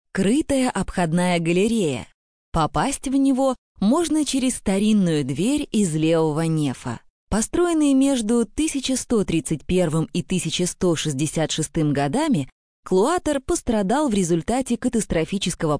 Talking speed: 90 wpm